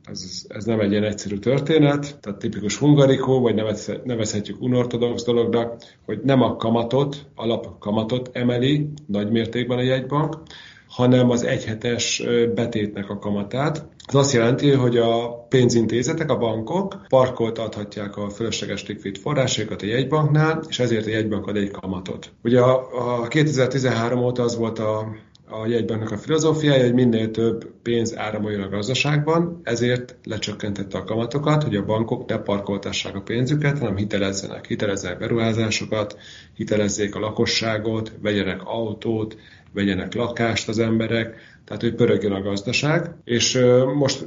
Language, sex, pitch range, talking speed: Hungarian, male, 105-125 Hz, 140 wpm